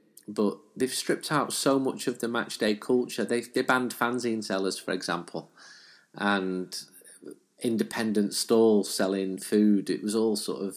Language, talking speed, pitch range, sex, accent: English, 150 wpm, 100-125 Hz, male, British